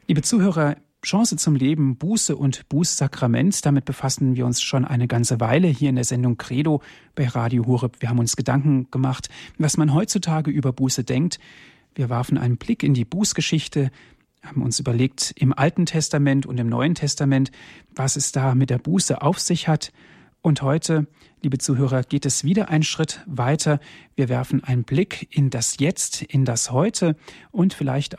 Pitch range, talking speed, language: 130-155 Hz, 175 wpm, German